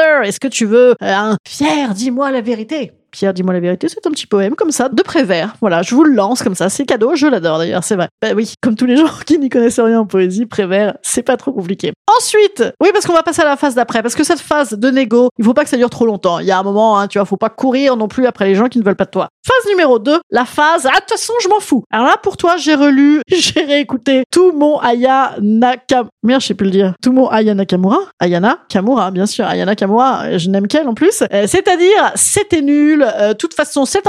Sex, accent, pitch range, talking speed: female, French, 210-305 Hz, 265 wpm